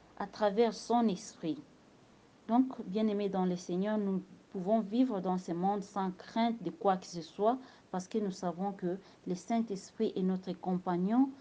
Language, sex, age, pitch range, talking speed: English, female, 40-59, 185-230 Hz, 175 wpm